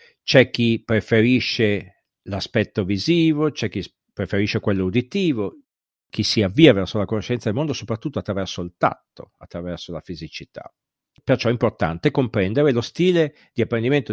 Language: Italian